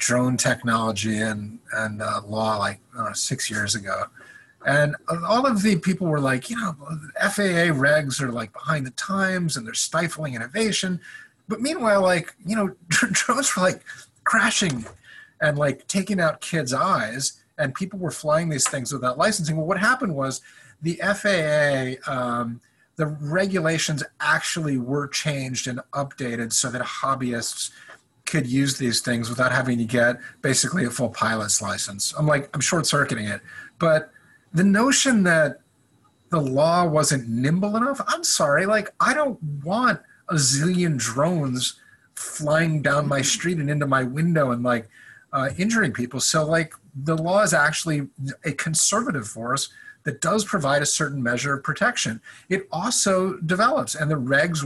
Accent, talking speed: American, 160 wpm